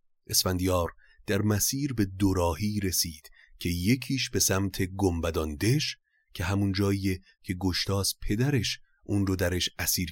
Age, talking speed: 30-49, 130 wpm